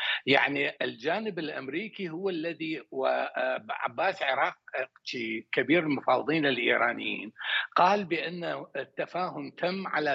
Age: 60-79